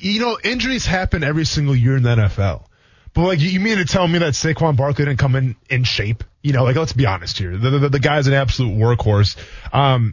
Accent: American